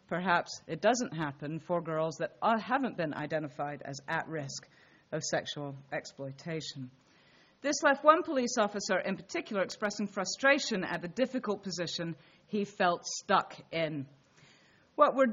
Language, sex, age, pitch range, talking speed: English, female, 40-59, 155-225 Hz, 135 wpm